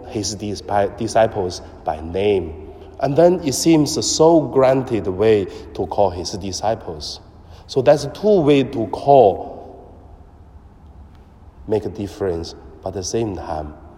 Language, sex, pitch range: Chinese, male, 90-125 Hz